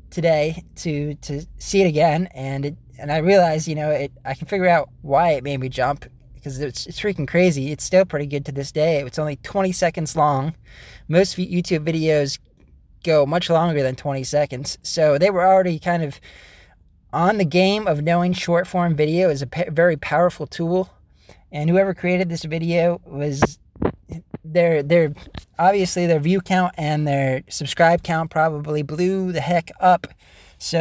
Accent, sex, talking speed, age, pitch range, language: American, male, 175 wpm, 20-39, 145-170 Hz, English